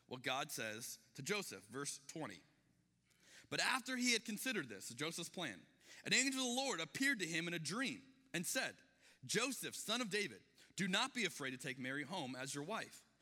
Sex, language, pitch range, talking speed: male, English, 130-205 Hz, 195 wpm